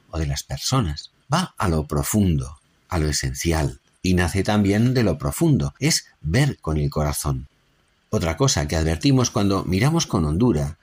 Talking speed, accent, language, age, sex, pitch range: 165 wpm, Spanish, Spanish, 60-79, male, 75-115 Hz